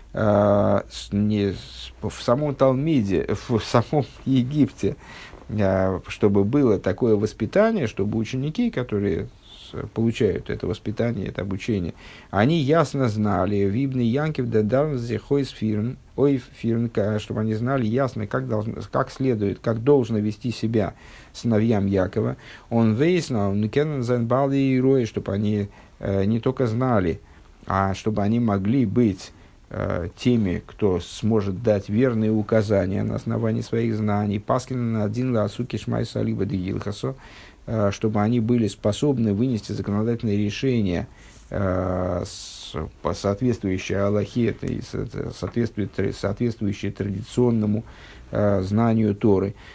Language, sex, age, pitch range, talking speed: Russian, male, 50-69, 100-130 Hz, 95 wpm